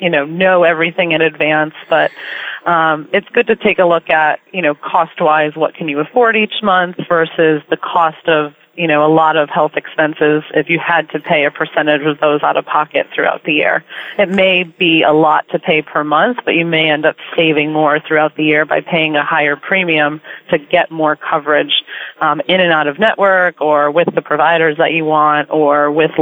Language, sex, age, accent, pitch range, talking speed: English, female, 30-49, American, 155-180 Hz, 215 wpm